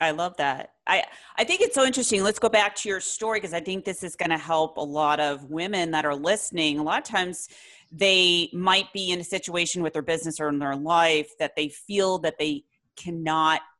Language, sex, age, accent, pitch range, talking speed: English, female, 40-59, American, 160-205 Hz, 230 wpm